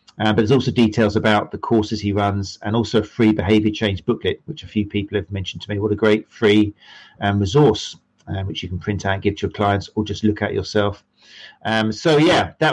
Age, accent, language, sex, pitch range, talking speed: 40-59, British, English, male, 105-125 Hz, 240 wpm